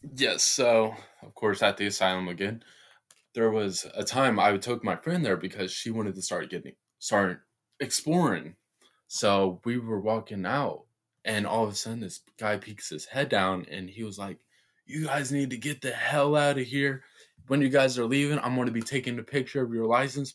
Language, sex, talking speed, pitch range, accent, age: English, male, 205 wpm, 95-120 Hz, American, 20-39